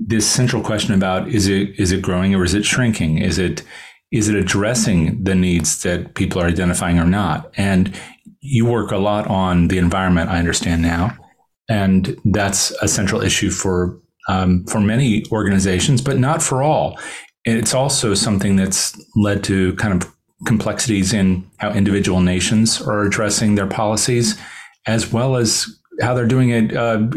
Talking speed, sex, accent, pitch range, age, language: 170 wpm, male, American, 100-125 Hz, 30-49, English